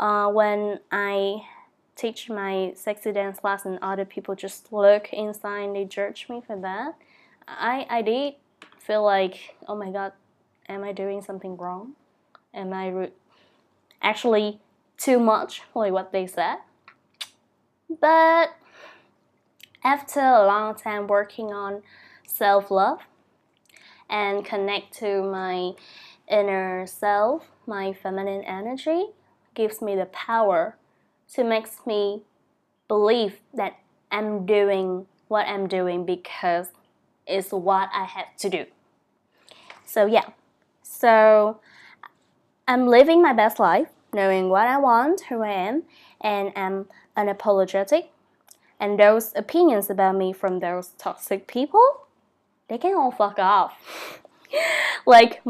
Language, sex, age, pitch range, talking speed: English, female, 10-29, 195-235 Hz, 125 wpm